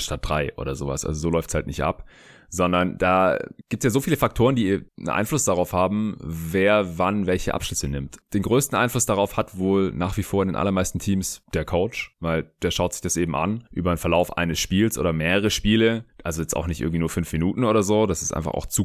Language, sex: German, male